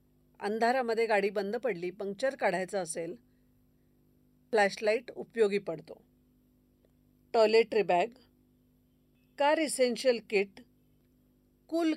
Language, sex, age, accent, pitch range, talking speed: Marathi, female, 40-59, native, 185-240 Hz, 75 wpm